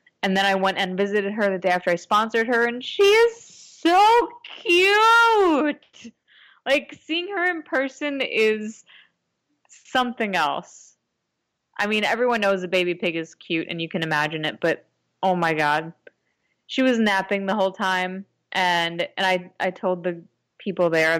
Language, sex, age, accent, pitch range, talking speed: English, female, 20-39, American, 175-230 Hz, 165 wpm